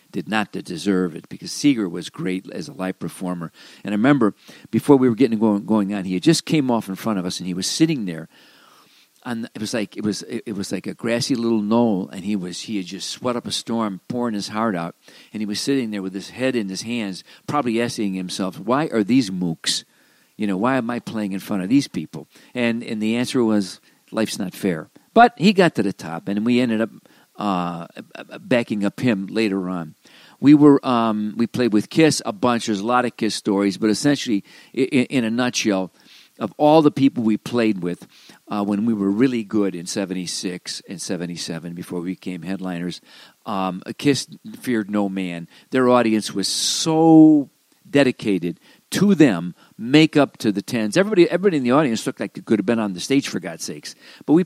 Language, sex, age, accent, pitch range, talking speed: English, male, 50-69, American, 95-130 Hz, 215 wpm